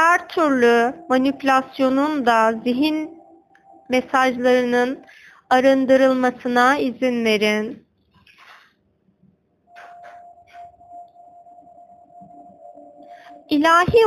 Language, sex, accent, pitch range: Turkish, female, native, 250-360 Hz